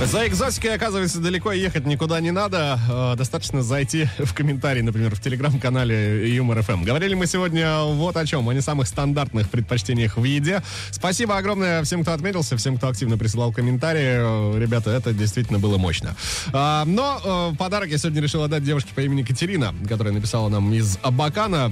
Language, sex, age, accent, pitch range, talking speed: Russian, male, 20-39, native, 115-165 Hz, 165 wpm